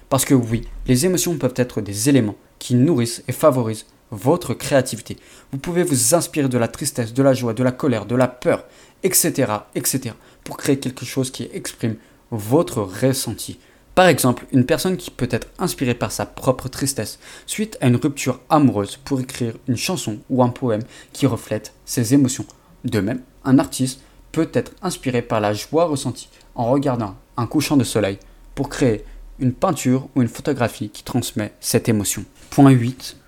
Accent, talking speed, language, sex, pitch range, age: French, 180 wpm, French, male, 115-140 Hz, 20-39